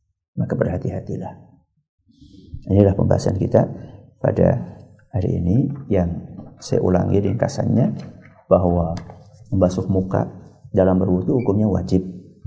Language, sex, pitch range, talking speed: Malay, male, 95-120 Hz, 90 wpm